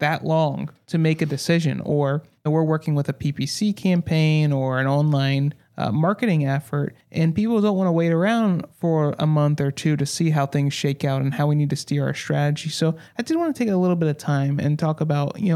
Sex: male